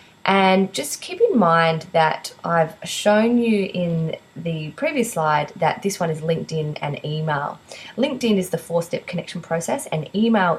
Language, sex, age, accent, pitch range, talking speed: English, female, 20-39, Australian, 150-190 Hz, 160 wpm